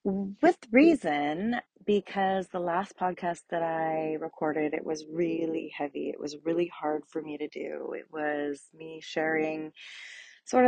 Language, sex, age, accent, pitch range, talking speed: English, female, 30-49, American, 150-170 Hz, 145 wpm